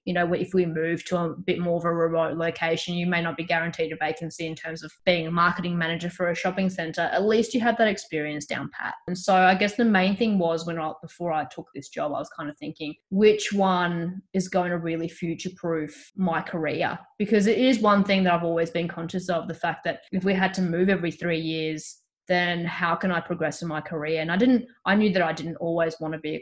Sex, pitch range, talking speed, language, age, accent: female, 165-185 Hz, 255 wpm, English, 20-39, Australian